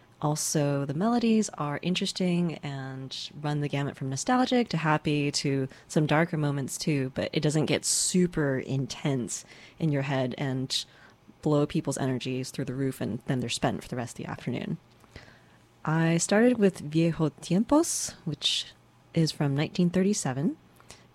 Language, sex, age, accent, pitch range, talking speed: English, female, 20-39, American, 135-170 Hz, 150 wpm